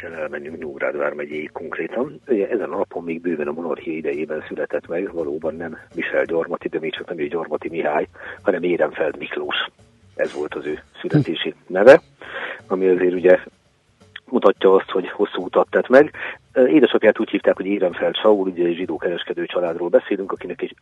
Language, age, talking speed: Hungarian, 50-69, 165 wpm